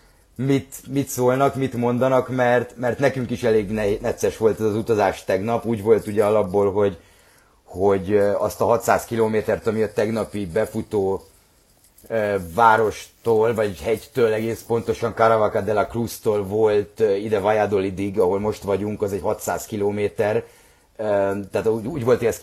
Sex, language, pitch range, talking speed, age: male, Hungarian, 95-115 Hz, 145 wpm, 30-49